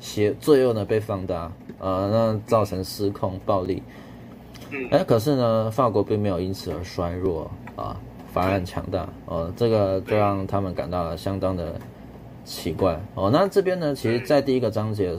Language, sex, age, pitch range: Chinese, male, 20-39, 95-115 Hz